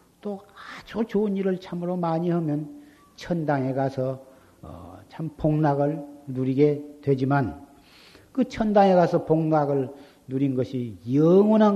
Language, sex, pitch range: Korean, male, 135-205 Hz